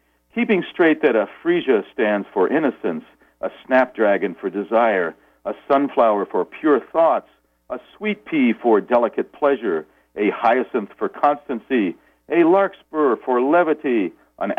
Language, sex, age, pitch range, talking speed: English, male, 60-79, 105-170 Hz, 130 wpm